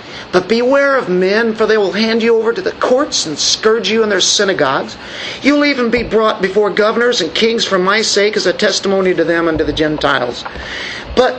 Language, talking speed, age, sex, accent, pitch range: English, 215 wpm, 50-69, male, American, 185-235 Hz